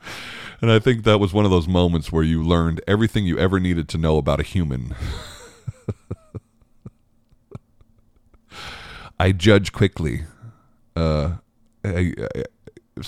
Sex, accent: male, American